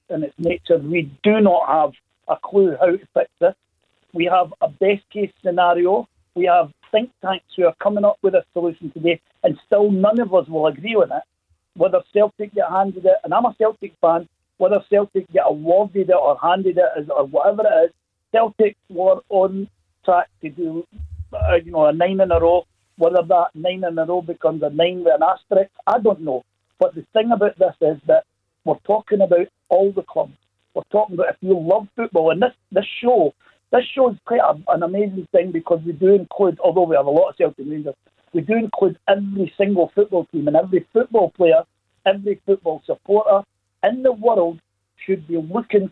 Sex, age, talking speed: male, 50-69, 200 wpm